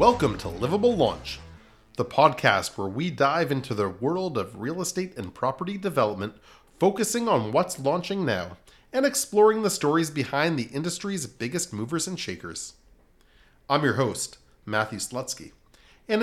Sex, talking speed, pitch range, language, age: male, 150 wpm, 120-185 Hz, English, 30-49